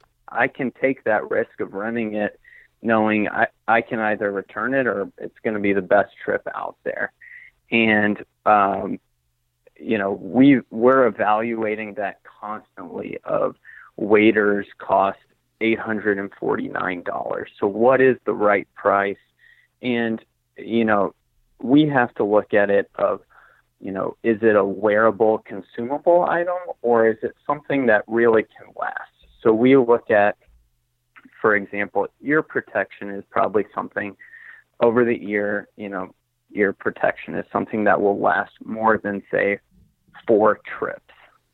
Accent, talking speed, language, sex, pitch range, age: American, 140 wpm, English, male, 100-120 Hz, 30-49